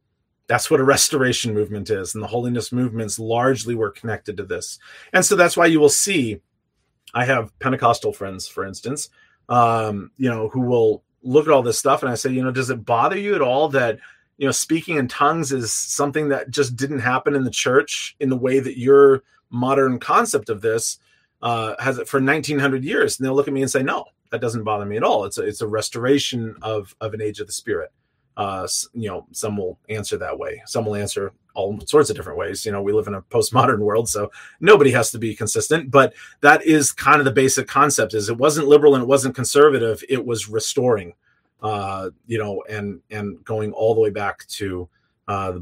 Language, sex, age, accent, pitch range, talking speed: English, male, 30-49, American, 115-145 Hz, 220 wpm